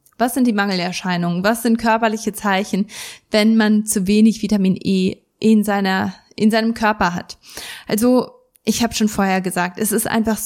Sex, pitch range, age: female, 205-230 Hz, 20-39